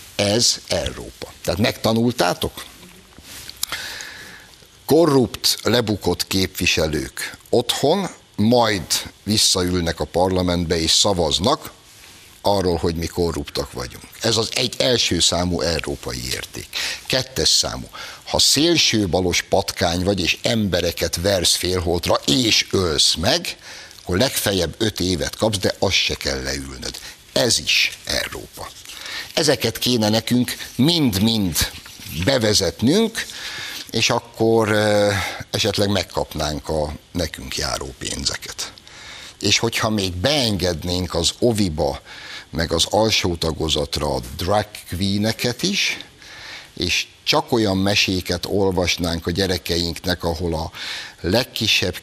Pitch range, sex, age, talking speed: 85-110 Hz, male, 60-79, 105 wpm